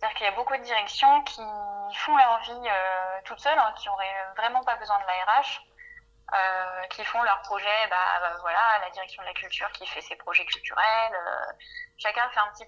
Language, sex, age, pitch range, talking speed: French, female, 20-39, 200-250 Hz, 215 wpm